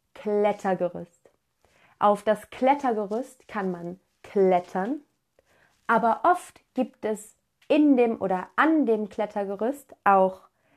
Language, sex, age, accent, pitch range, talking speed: German, female, 20-39, German, 185-240 Hz, 100 wpm